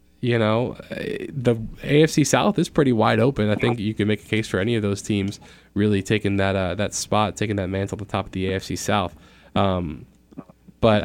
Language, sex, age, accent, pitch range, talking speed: English, male, 10-29, American, 100-120 Hz, 210 wpm